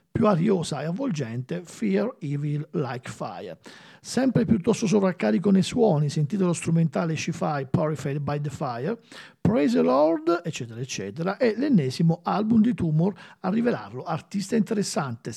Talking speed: 135 wpm